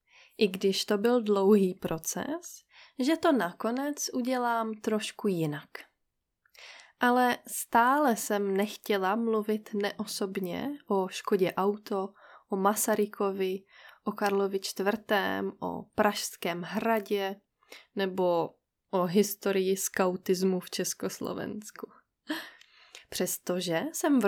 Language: English